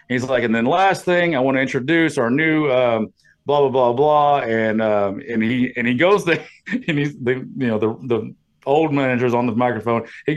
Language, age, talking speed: English, 40-59, 220 wpm